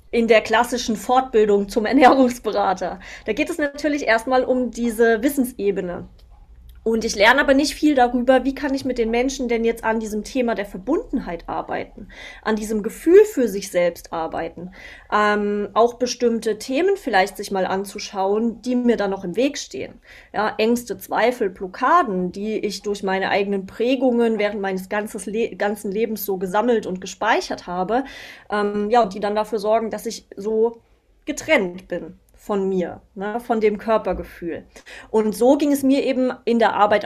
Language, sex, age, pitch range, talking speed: German, female, 30-49, 200-260 Hz, 170 wpm